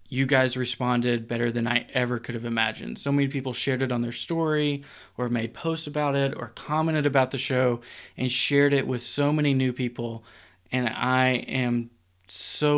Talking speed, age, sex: 190 wpm, 20-39, male